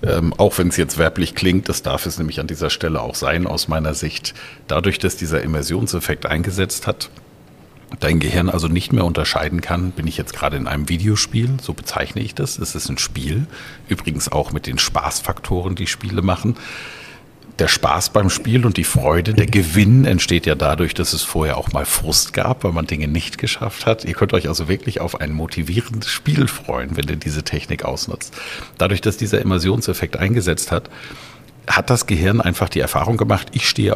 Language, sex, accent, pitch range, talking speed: German, male, German, 80-110 Hz, 195 wpm